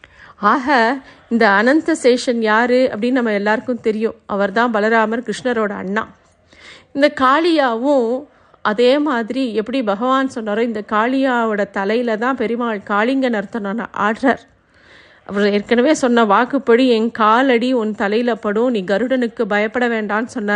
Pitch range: 215-260 Hz